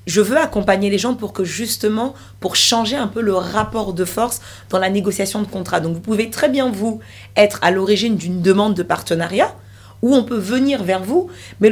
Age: 40-59